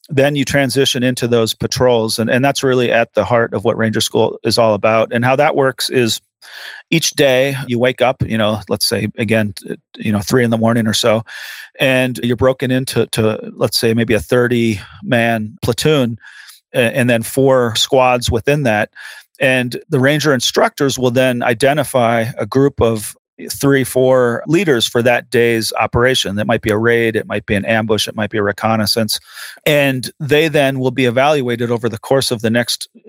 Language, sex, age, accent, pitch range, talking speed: English, male, 40-59, American, 110-130 Hz, 190 wpm